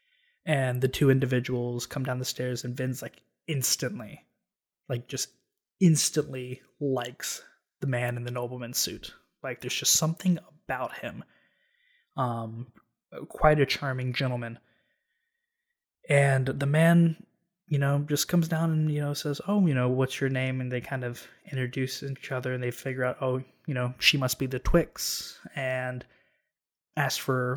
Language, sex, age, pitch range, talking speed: English, male, 20-39, 125-150 Hz, 160 wpm